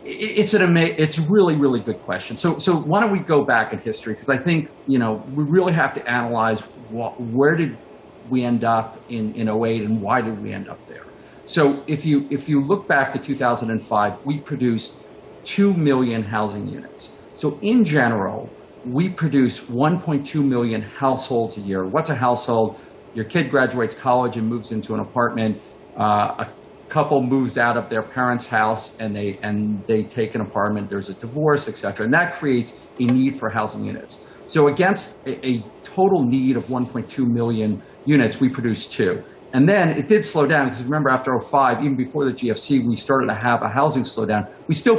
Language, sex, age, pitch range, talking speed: English, male, 50-69, 115-145 Hz, 195 wpm